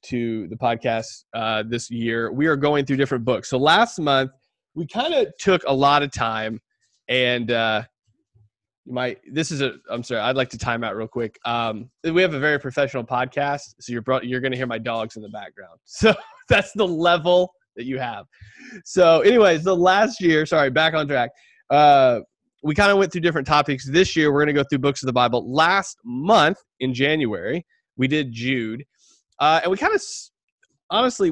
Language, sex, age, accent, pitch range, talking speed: English, male, 20-39, American, 120-165 Hz, 205 wpm